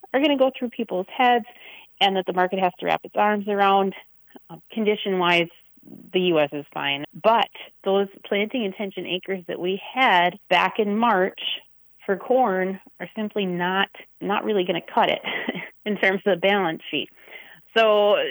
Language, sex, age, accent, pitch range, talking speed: English, female, 30-49, American, 175-220 Hz, 170 wpm